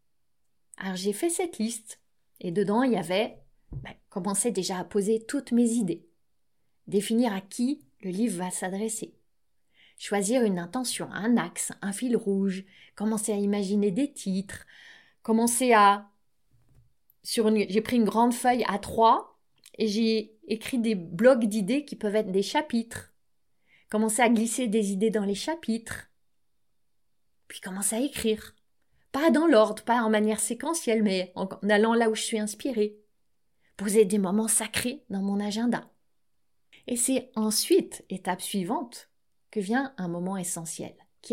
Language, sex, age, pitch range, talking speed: French, female, 20-39, 200-245 Hz, 150 wpm